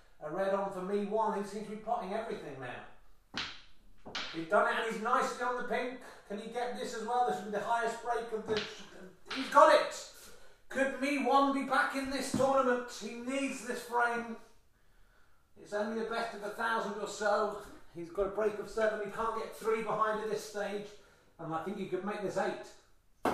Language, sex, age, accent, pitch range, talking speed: English, male, 30-49, British, 185-225 Hz, 210 wpm